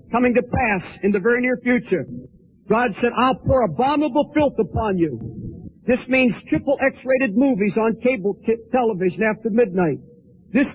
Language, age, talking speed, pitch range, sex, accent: English, 50-69, 150 wpm, 225-265 Hz, male, American